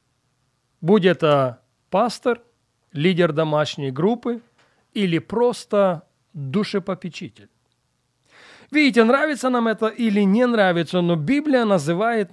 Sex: male